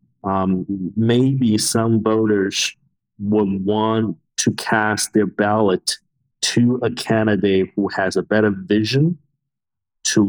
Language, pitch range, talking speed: English, 100-115 Hz, 110 wpm